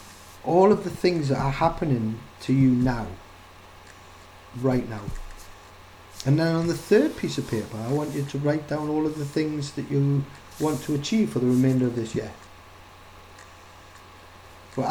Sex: male